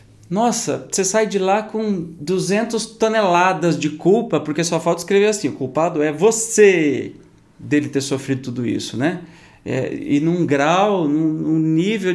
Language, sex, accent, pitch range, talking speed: Portuguese, male, Brazilian, 140-200 Hz, 155 wpm